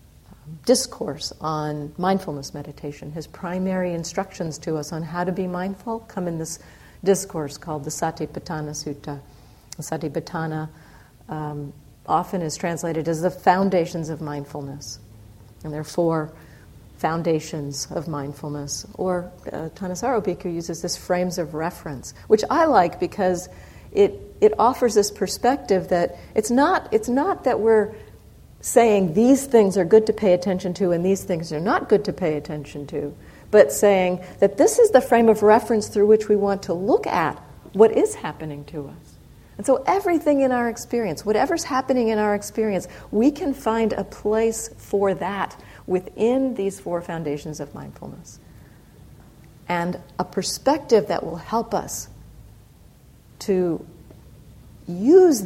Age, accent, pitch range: 50-69, American, 155-215 Hz